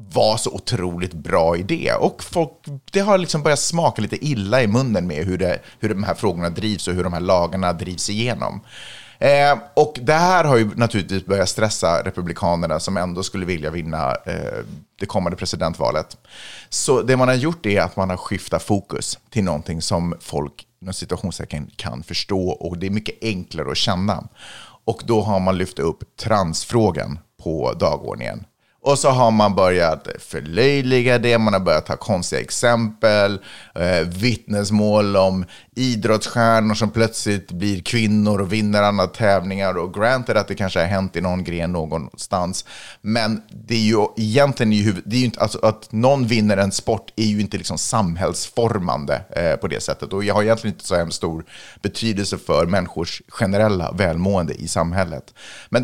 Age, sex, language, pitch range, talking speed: 30-49, male, Swedish, 90-115 Hz, 175 wpm